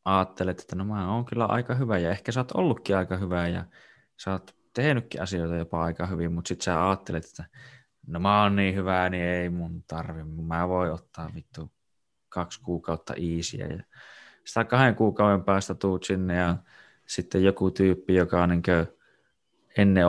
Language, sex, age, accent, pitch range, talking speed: Finnish, male, 20-39, native, 90-100 Hz, 175 wpm